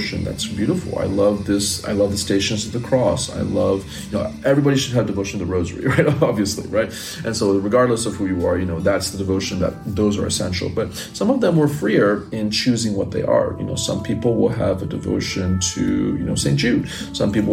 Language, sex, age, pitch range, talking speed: English, male, 30-49, 95-120 Hz, 235 wpm